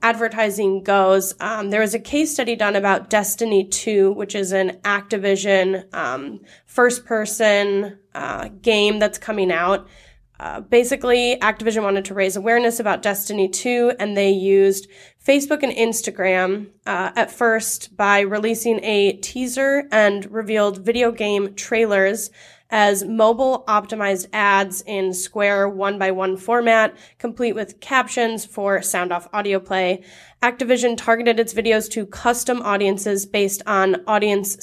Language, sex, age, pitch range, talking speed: English, female, 20-39, 195-230 Hz, 135 wpm